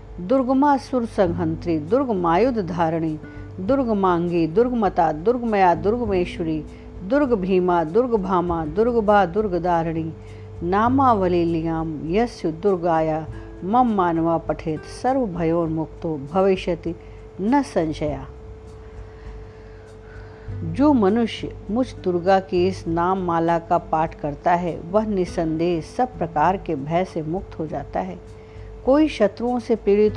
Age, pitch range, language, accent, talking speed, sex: 50-69, 160-210 Hz, Hindi, native, 105 wpm, female